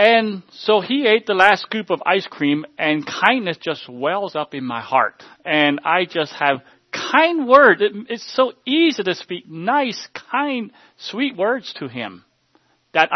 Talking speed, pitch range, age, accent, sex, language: 165 wpm, 130-205 Hz, 40-59, American, male, English